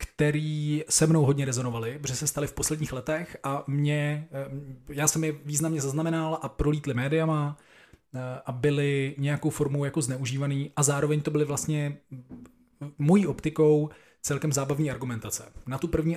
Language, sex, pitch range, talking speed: Czech, male, 130-150 Hz, 150 wpm